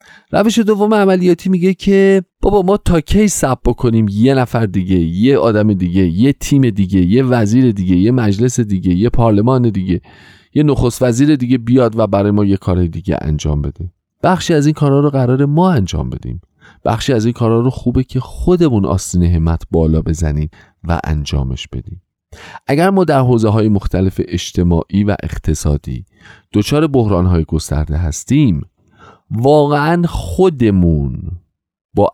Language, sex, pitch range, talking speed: Persian, male, 90-130 Hz, 155 wpm